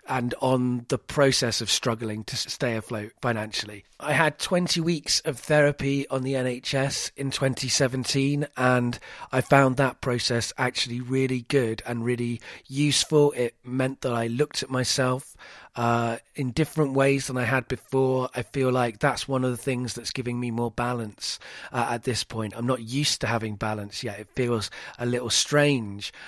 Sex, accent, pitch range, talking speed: male, British, 120-135 Hz, 175 wpm